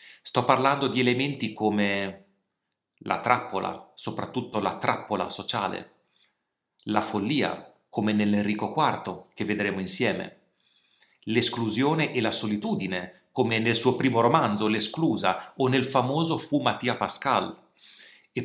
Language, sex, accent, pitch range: Italian, male, native, 110-145 Hz